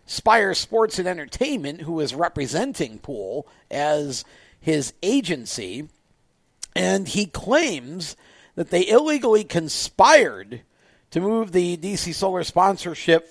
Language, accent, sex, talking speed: English, American, male, 110 wpm